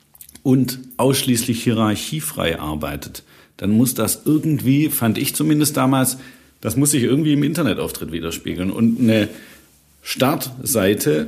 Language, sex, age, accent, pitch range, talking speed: German, male, 50-69, German, 110-140 Hz, 115 wpm